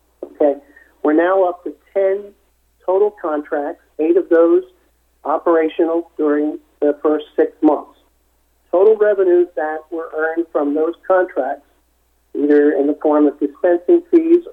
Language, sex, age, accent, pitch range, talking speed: English, male, 50-69, American, 145-175 Hz, 130 wpm